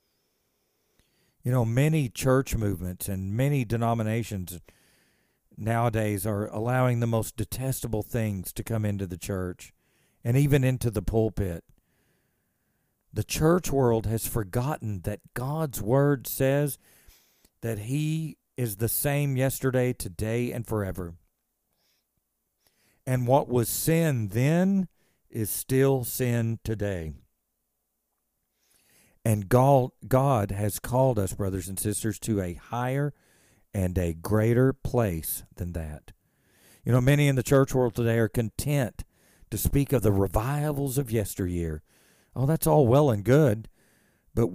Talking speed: 125 wpm